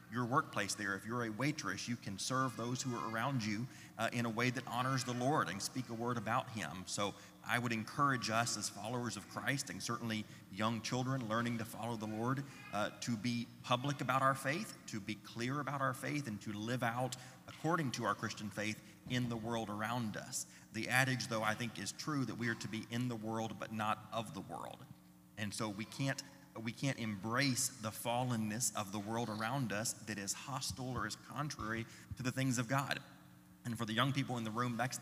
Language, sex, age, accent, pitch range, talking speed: English, male, 30-49, American, 110-130 Hz, 220 wpm